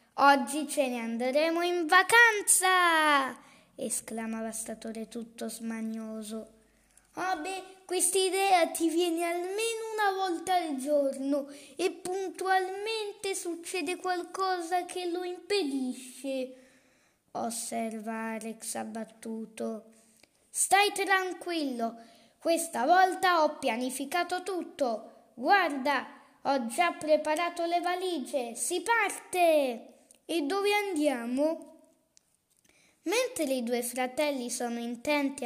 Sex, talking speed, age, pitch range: female, 90 wpm, 20-39, 250-360 Hz